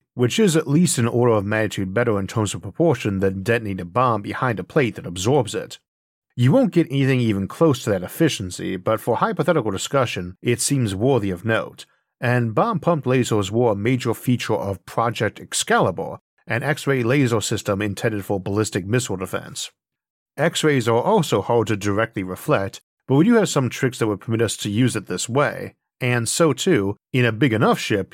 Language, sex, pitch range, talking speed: English, male, 105-135 Hz, 190 wpm